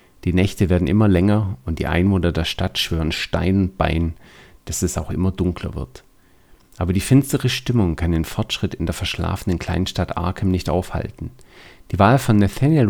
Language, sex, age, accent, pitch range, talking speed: German, male, 40-59, German, 90-120 Hz, 175 wpm